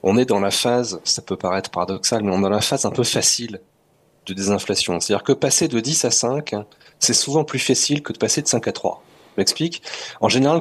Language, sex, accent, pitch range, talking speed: French, male, French, 100-130 Hz, 240 wpm